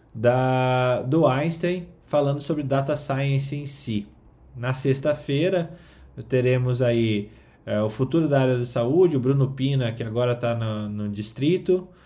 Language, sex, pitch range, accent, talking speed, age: Portuguese, male, 115-135 Hz, Brazilian, 140 wpm, 20-39